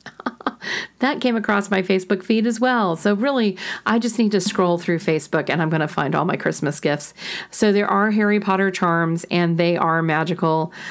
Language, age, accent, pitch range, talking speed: English, 40-59, American, 165-200 Hz, 200 wpm